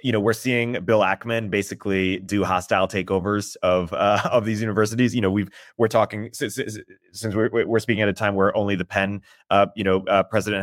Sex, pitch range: male, 95-105 Hz